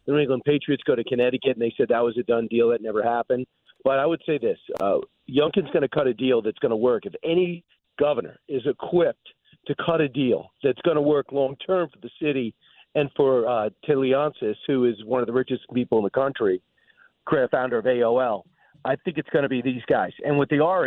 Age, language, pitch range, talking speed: 40-59, English, 125-165 Hz, 235 wpm